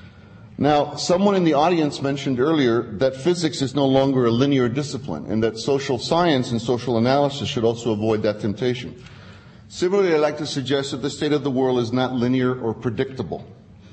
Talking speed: 185 wpm